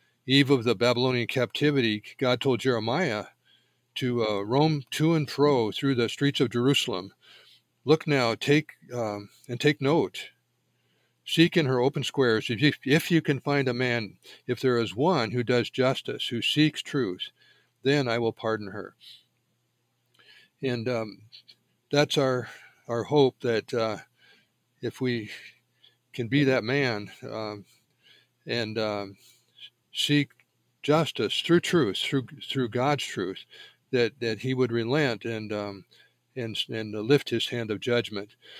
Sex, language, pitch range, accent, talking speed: male, English, 115-140 Hz, American, 145 wpm